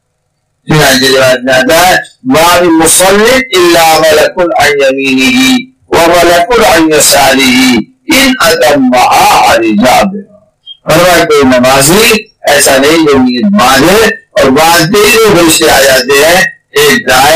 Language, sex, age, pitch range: English, male, 60-79, 145-220 Hz